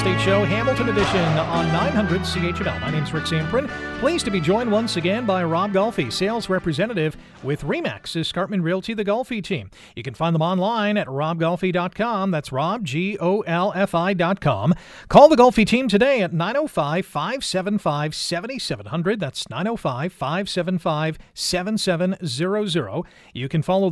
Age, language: 40-59, English